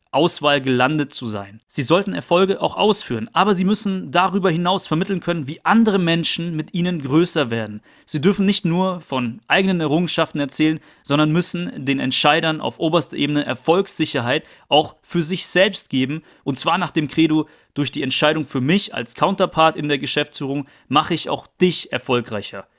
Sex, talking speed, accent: male, 170 wpm, German